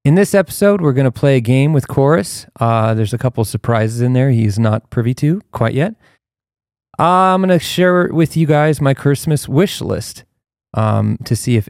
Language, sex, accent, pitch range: English, male, American, 110-130 Hz